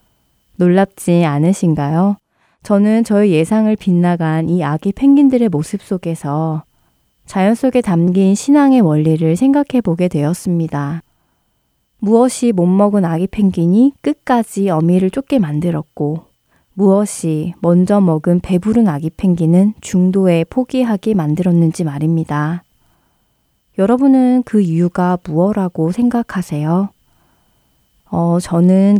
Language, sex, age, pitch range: Korean, female, 20-39, 165-215 Hz